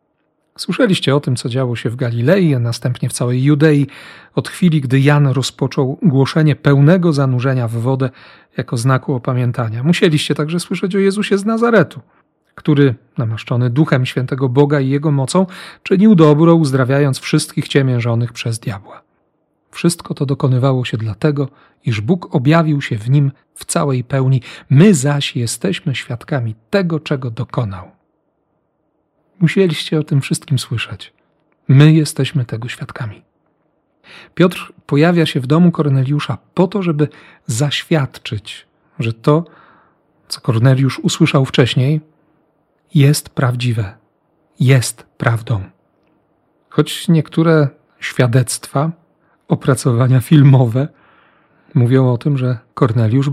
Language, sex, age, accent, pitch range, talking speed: Polish, male, 40-59, native, 130-155 Hz, 120 wpm